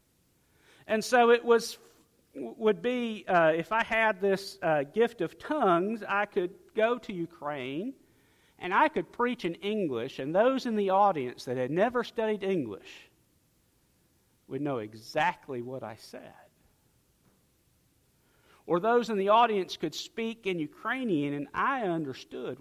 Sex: male